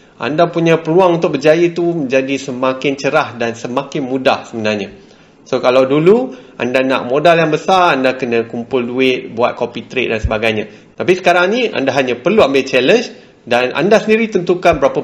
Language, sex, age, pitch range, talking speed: Malay, male, 30-49, 120-175 Hz, 170 wpm